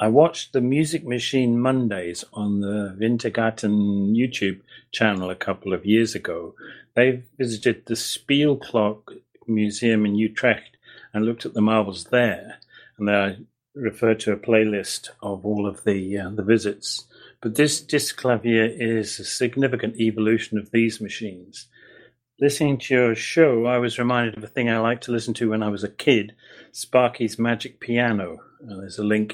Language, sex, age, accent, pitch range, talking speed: English, male, 40-59, British, 105-120 Hz, 165 wpm